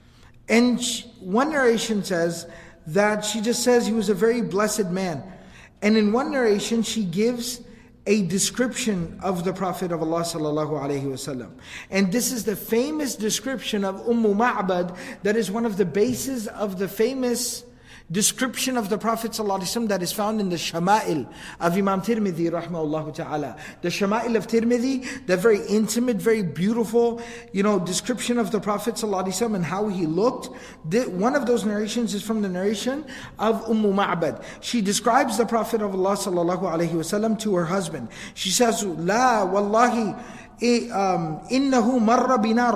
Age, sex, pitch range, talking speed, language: 50-69, male, 195-240 Hz, 155 wpm, English